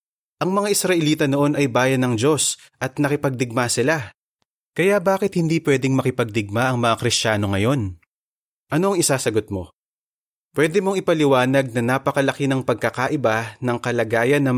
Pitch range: 115-145 Hz